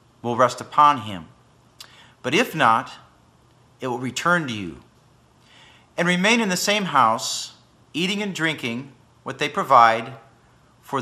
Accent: American